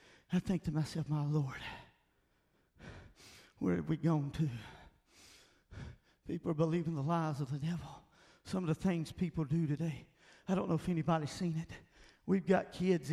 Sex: male